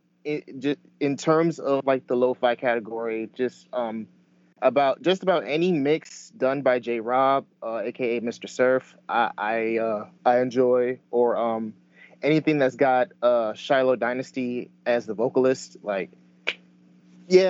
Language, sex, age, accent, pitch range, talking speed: English, male, 30-49, American, 105-145 Hz, 135 wpm